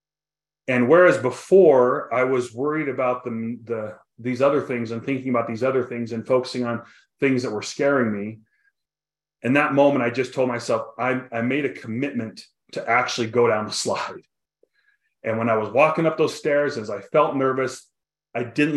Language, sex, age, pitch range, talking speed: English, male, 30-49, 120-160 Hz, 185 wpm